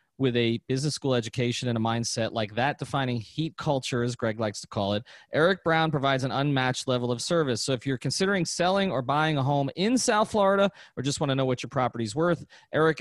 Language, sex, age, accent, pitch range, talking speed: English, male, 30-49, American, 115-145 Hz, 220 wpm